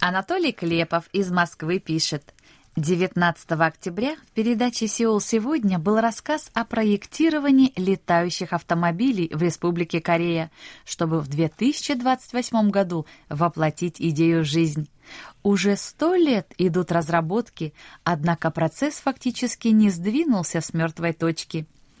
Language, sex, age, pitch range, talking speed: Russian, female, 20-39, 165-245 Hz, 110 wpm